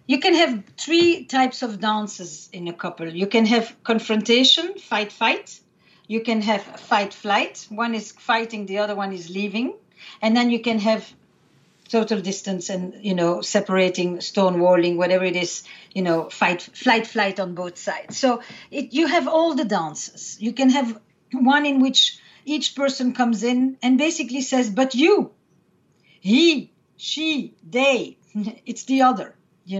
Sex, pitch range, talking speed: female, 205-275 Hz, 160 wpm